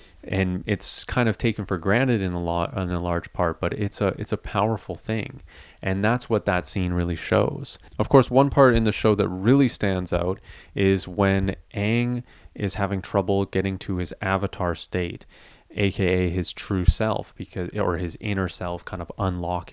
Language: English